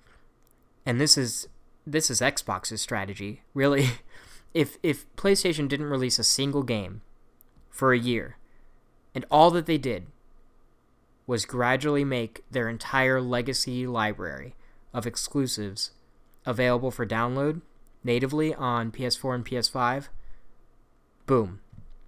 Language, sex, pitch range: English, male, 115-145 Hz